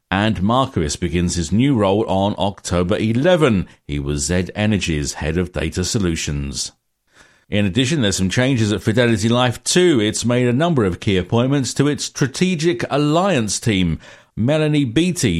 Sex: male